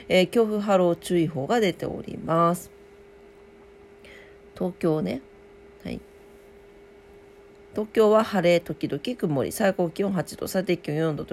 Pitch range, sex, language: 170-245 Hz, female, Japanese